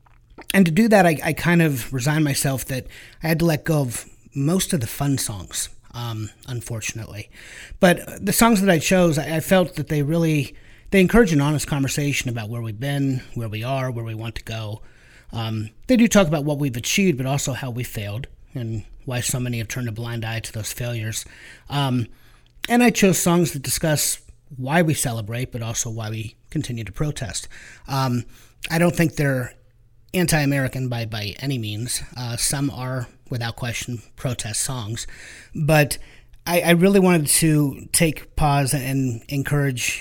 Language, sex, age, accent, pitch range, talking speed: English, male, 30-49, American, 115-150 Hz, 185 wpm